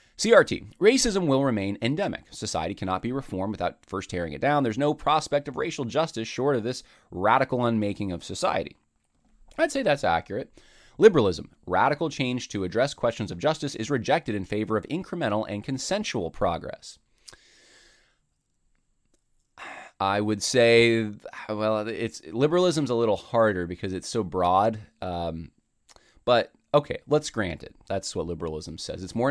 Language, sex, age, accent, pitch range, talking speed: English, male, 20-39, American, 95-130 Hz, 150 wpm